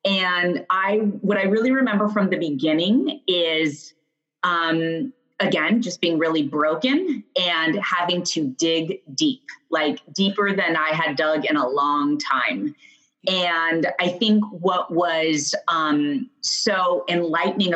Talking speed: 130 wpm